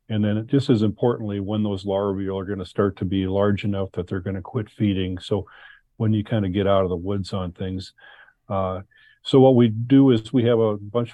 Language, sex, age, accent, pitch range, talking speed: English, male, 40-59, American, 95-110 Hz, 235 wpm